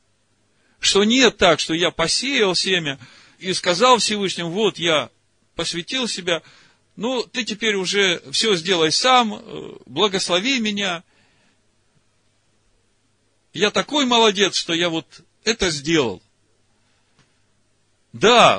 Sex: male